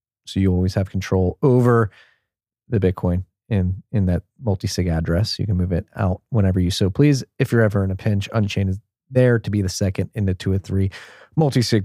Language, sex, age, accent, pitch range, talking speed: English, male, 30-49, American, 95-115 Hz, 210 wpm